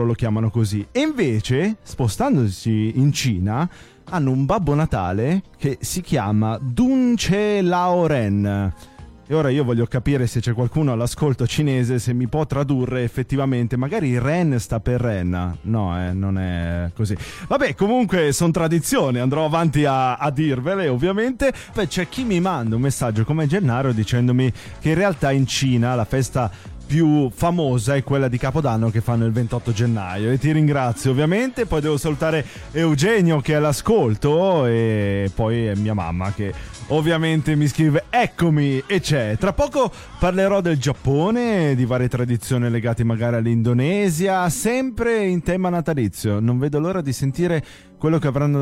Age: 30-49